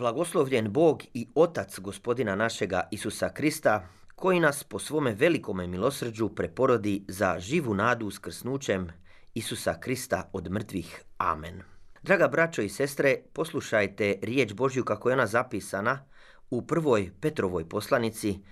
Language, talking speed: Croatian, 125 wpm